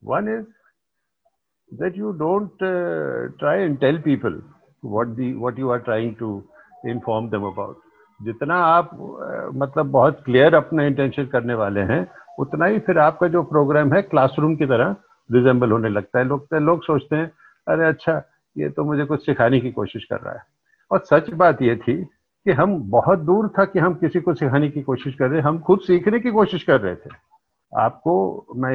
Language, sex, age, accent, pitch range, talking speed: English, male, 50-69, Indian, 130-170 Hz, 150 wpm